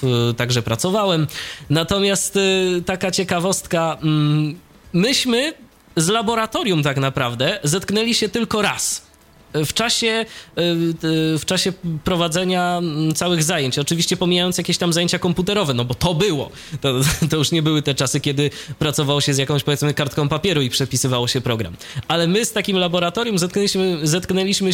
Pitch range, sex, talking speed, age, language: 150-200 Hz, male, 140 wpm, 20-39, Polish